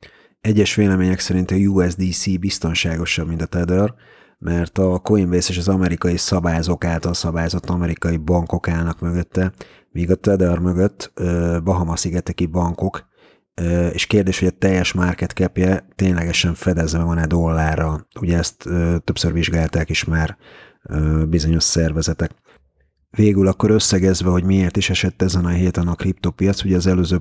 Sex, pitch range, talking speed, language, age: male, 85-95 Hz, 135 wpm, Hungarian, 30-49